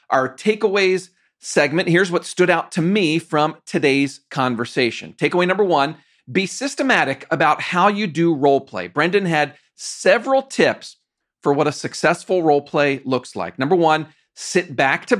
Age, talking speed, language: 40-59, 160 wpm, English